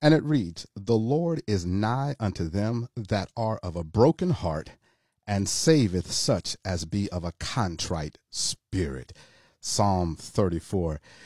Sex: male